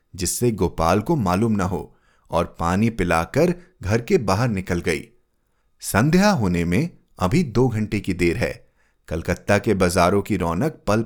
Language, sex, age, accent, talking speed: Hindi, male, 30-49, native, 155 wpm